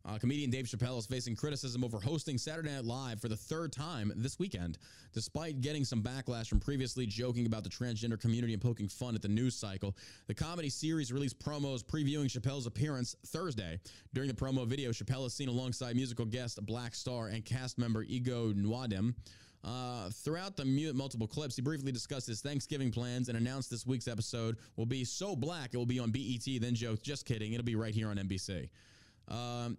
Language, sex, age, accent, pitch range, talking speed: English, male, 20-39, American, 110-135 Hz, 195 wpm